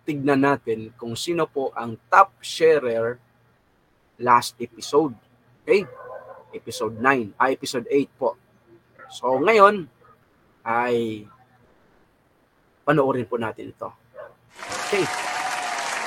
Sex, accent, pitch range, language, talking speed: male, native, 115-195 Hz, Filipino, 95 wpm